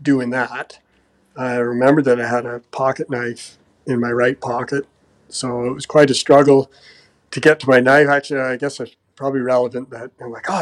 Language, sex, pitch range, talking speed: English, male, 120-135 Hz, 200 wpm